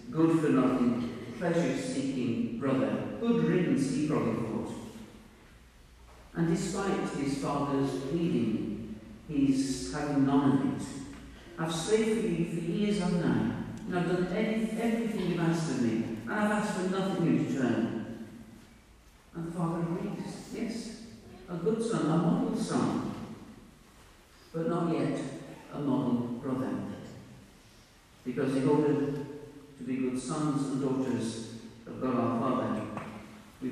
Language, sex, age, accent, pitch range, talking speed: English, male, 50-69, British, 115-165 Hz, 130 wpm